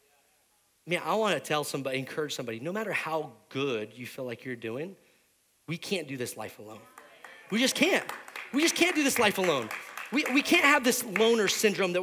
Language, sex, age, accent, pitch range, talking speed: English, male, 30-49, American, 140-215 Hz, 200 wpm